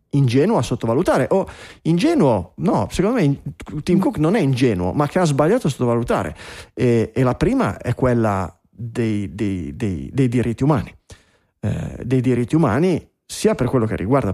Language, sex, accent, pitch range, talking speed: Italian, male, native, 110-145 Hz, 160 wpm